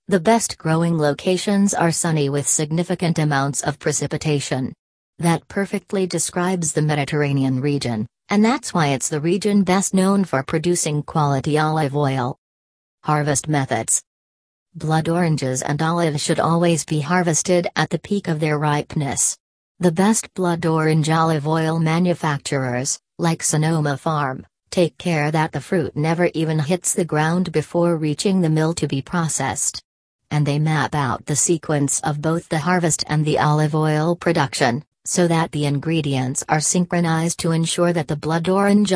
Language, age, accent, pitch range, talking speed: English, 40-59, American, 150-175 Hz, 155 wpm